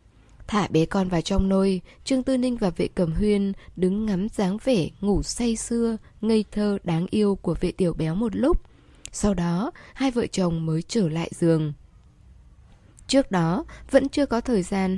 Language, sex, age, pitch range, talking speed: Vietnamese, female, 10-29, 170-230 Hz, 185 wpm